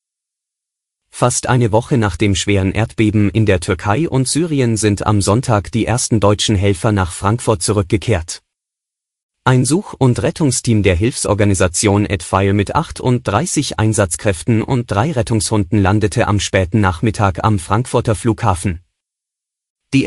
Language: German